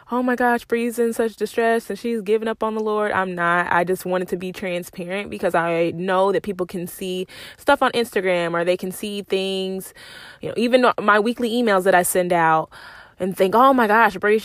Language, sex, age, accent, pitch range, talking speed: English, female, 20-39, American, 175-205 Hz, 220 wpm